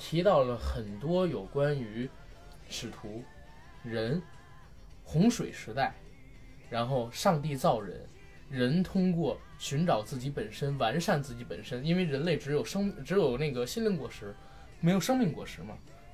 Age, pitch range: 20-39, 125-170 Hz